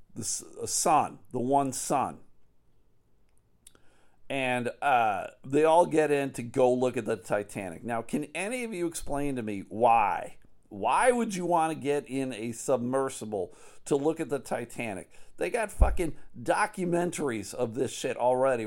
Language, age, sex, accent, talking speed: English, 50-69, male, American, 155 wpm